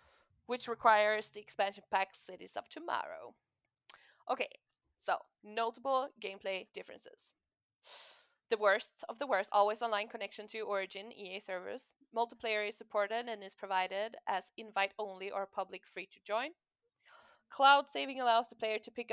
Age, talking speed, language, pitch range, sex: 20-39, 145 wpm, English, 195-235 Hz, female